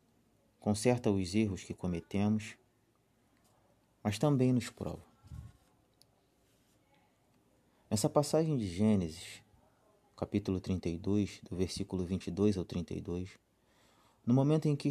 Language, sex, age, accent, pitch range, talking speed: Portuguese, male, 30-49, Brazilian, 95-120 Hz, 95 wpm